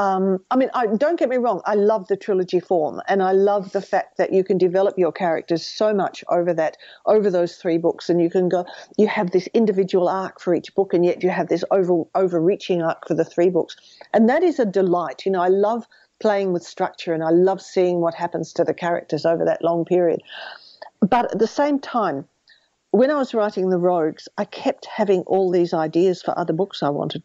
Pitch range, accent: 175-210 Hz, Australian